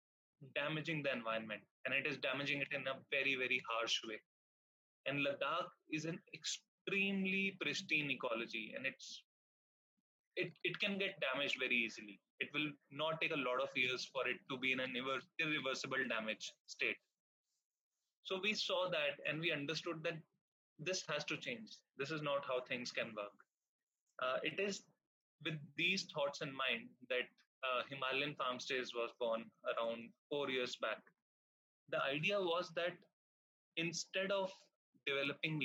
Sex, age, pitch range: male, 20-39, 130-180 Hz